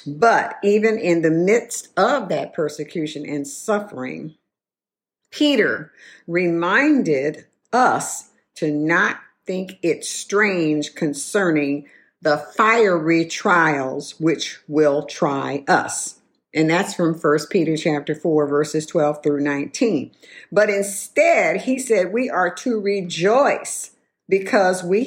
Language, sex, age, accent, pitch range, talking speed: English, female, 50-69, American, 150-210 Hz, 110 wpm